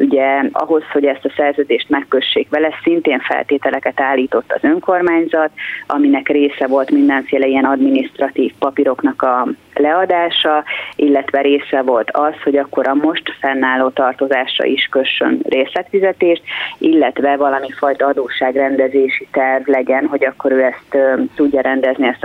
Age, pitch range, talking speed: 30-49, 135-160 Hz, 130 wpm